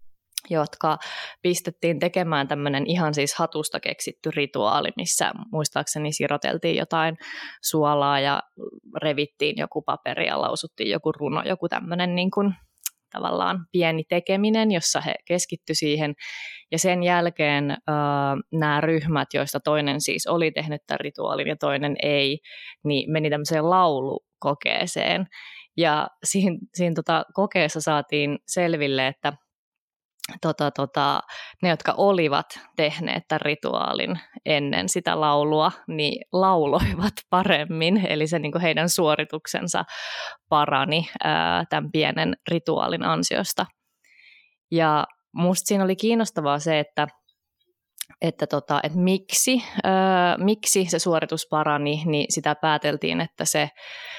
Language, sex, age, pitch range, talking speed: Finnish, female, 20-39, 145-175 Hz, 115 wpm